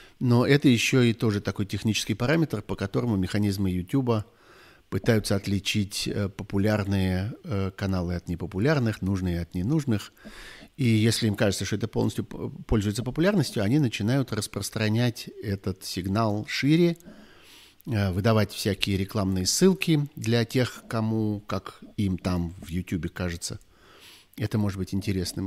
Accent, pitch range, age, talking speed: native, 95-125 Hz, 50-69, 125 wpm